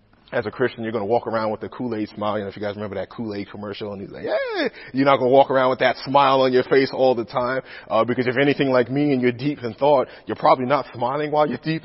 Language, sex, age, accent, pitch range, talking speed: English, male, 30-49, American, 105-135 Hz, 295 wpm